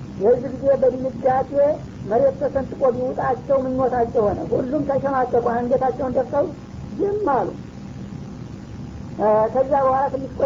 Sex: female